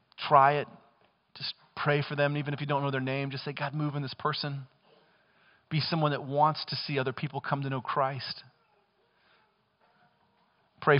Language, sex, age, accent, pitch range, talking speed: English, male, 40-59, American, 130-195 Hz, 180 wpm